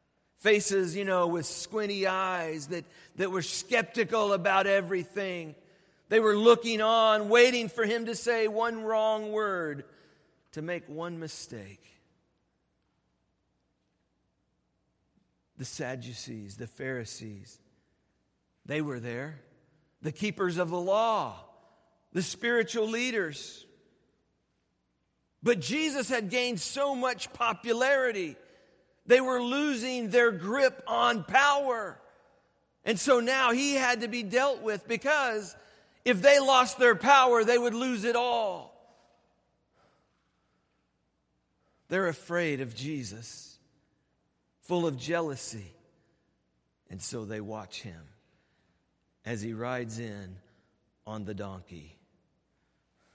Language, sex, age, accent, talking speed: English, male, 50-69, American, 110 wpm